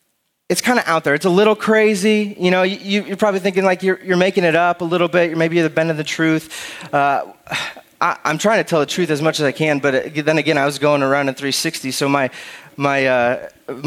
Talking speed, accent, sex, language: 240 wpm, American, male, English